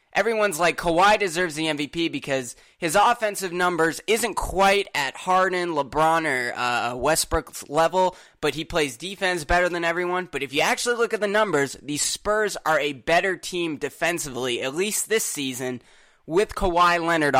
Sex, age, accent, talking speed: male, 20-39, American, 165 wpm